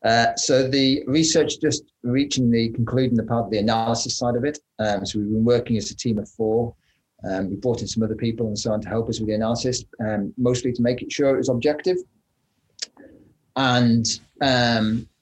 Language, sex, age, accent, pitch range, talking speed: English, male, 30-49, British, 100-125 Hz, 195 wpm